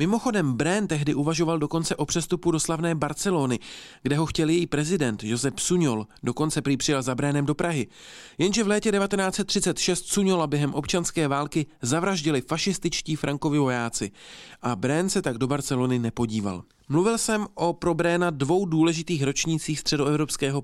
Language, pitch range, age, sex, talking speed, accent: Czech, 140-175 Hz, 40-59, male, 150 wpm, native